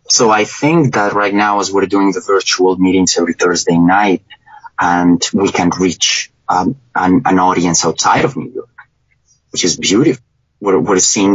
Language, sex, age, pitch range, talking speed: English, male, 30-49, 85-100 Hz, 175 wpm